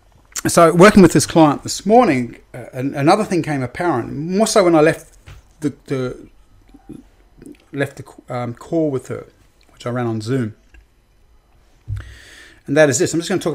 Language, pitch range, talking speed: English, 115-160 Hz, 170 wpm